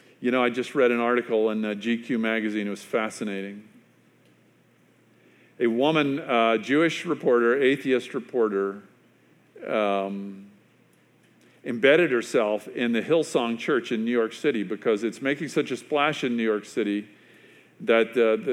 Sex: male